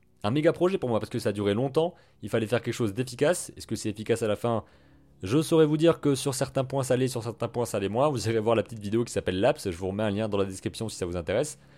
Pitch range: 105-140 Hz